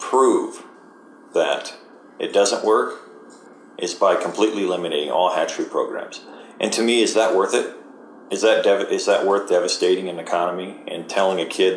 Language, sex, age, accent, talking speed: English, male, 40-59, American, 155 wpm